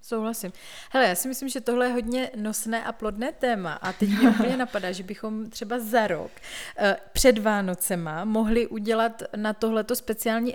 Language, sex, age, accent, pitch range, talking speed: Czech, female, 30-49, native, 200-230 Hz, 175 wpm